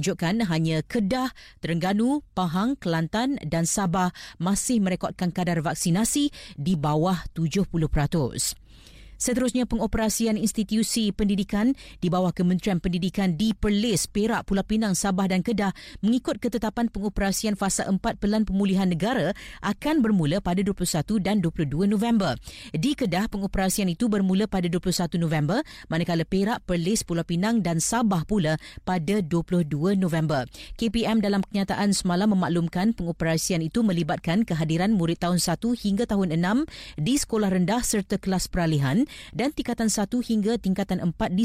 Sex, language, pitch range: female, Malay, 175-220 Hz